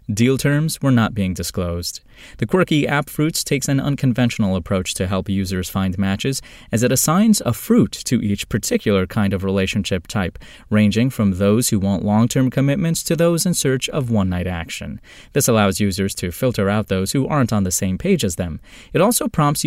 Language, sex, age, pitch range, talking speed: English, male, 20-39, 100-140 Hz, 190 wpm